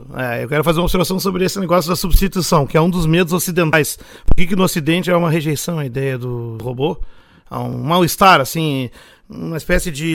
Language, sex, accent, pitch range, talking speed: Portuguese, male, Brazilian, 155-195 Hz, 220 wpm